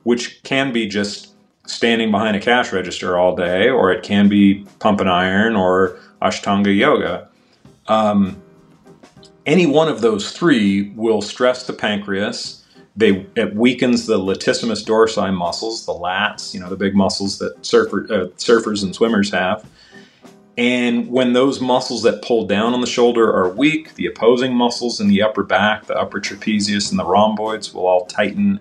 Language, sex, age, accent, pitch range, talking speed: English, male, 40-59, American, 100-120 Hz, 160 wpm